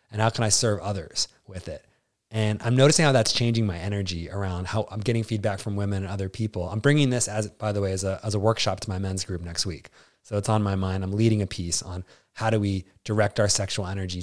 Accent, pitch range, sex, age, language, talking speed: American, 95-115 Hz, male, 20-39, English, 255 wpm